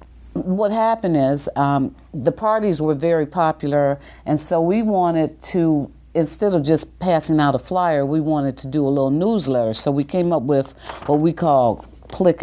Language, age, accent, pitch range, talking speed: English, 50-69, American, 130-160 Hz, 180 wpm